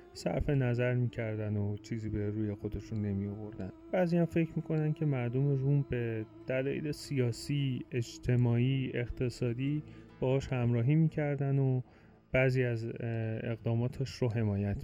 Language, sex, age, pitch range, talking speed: Persian, male, 30-49, 110-135 Hz, 125 wpm